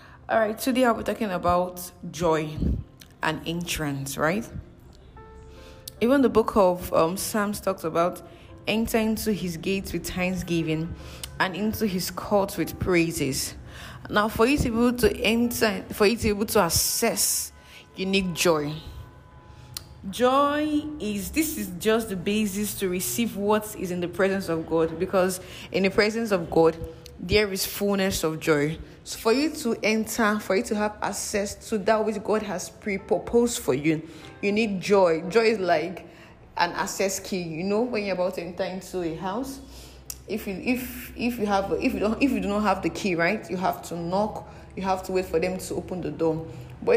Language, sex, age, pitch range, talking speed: English, female, 20-39, 170-215 Hz, 185 wpm